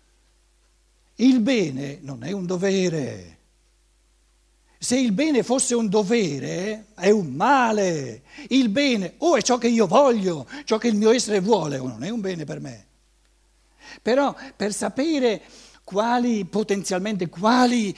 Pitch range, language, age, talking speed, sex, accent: 165-245 Hz, Italian, 60-79, 145 wpm, male, native